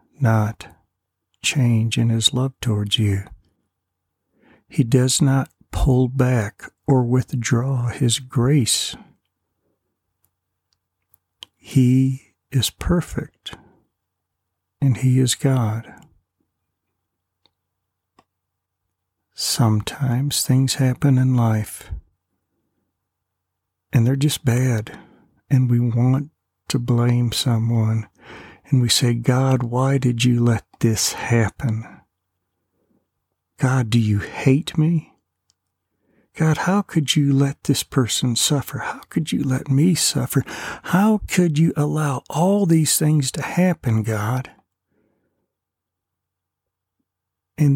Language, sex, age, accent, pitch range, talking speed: English, male, 60-79, American, 90-135 Hz, 100 wpm